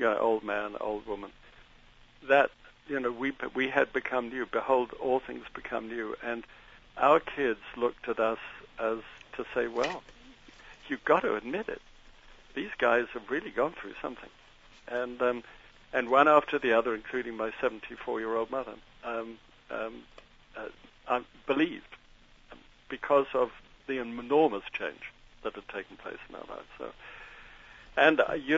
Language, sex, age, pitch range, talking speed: English, male, 60-79, 115-130 Hz, 160 wpm